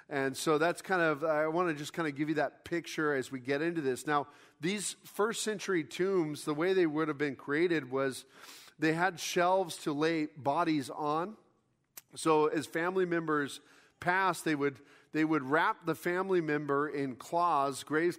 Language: English